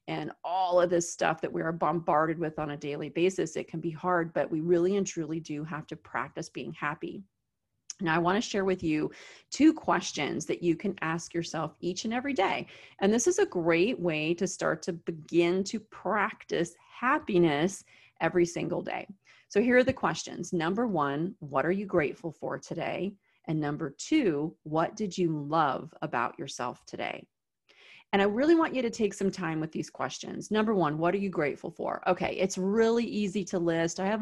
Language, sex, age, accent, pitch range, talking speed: English, female, 30-49, American, 165-195 Hz, 195 wpm